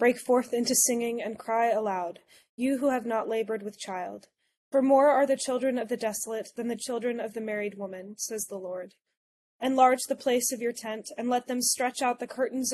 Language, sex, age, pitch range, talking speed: English, female, 20-39, 215-250 Hz, 210 wpm